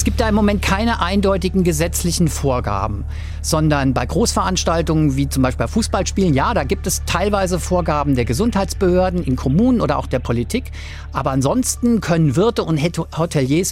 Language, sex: German, male